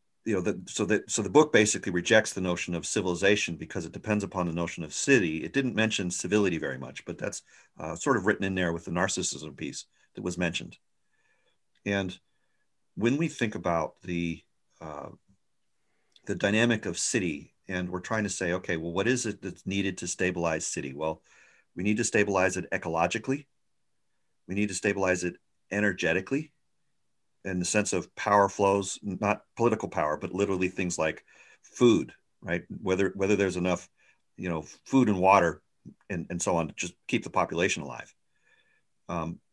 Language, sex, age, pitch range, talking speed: English, male, 50-69, 90-110 Hz, 180 wpm